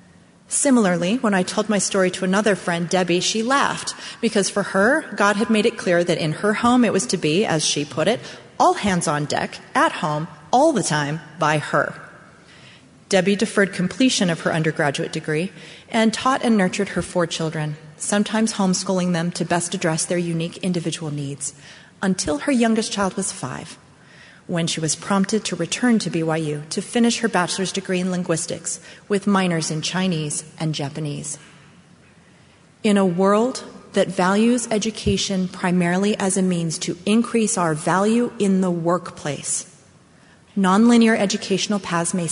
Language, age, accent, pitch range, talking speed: English, 30-49, American, 165-205 Hz, 165 wpm